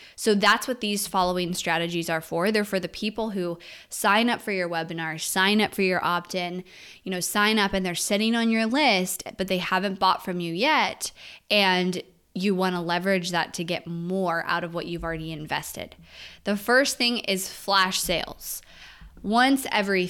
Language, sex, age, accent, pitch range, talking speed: English, female, 20-39, American, 170-205 Hz, 185 wpm